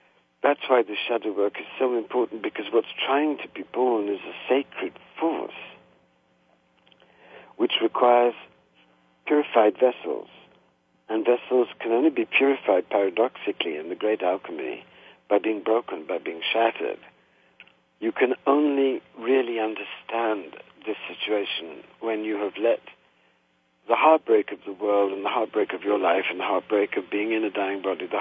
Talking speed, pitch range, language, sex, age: 150 wpm, 95-150 Hz, English, male, 60-79